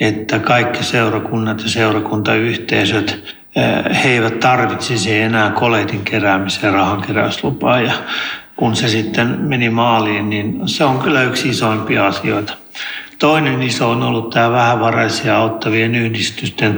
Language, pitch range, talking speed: Finnish, 110-135 Hz, 120 wpm